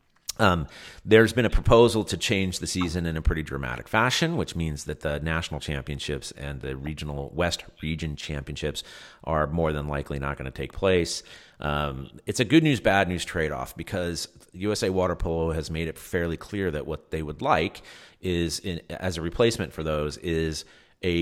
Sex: male